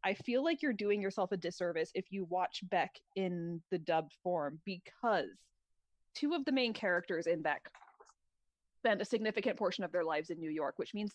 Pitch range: 185-260 Hz